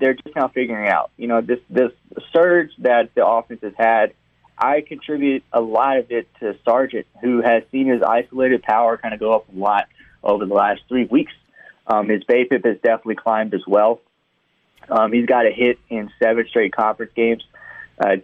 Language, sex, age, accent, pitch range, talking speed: English, male, 30-49, American, 110-135 Hz, 195 wpm